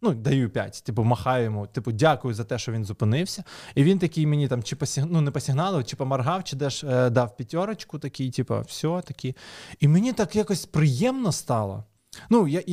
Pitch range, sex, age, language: 125-165 Hz, male, 20-39, Ukrainian